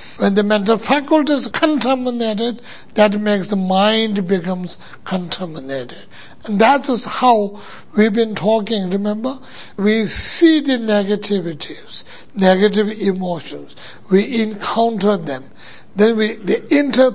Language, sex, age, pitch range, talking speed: English, male, 60-79, 190-240 Hz, 110 wpm